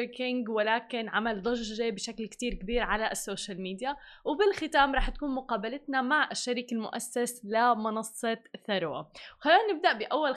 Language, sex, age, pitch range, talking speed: Arabic, female, 20-39, 220-270 Hz, 120 wpm